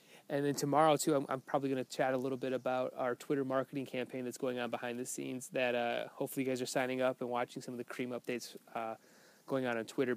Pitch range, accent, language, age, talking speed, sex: 120-140 Hz, American, English, 20-39, 260 wpm, male